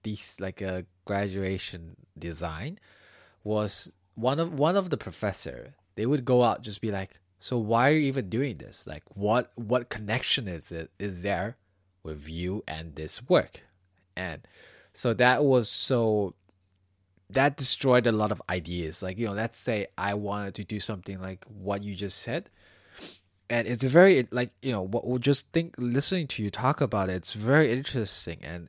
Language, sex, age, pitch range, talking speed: English, male, 20-39, 95-120 Hz, 180 wpm